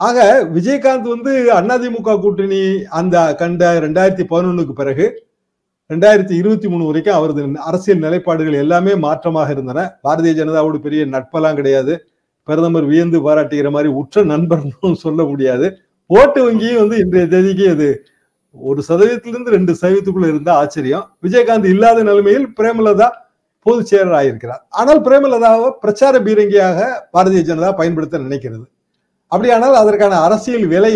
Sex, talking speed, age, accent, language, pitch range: male, 110 wpm, 50-69, native, Tamil, 155-205 Hz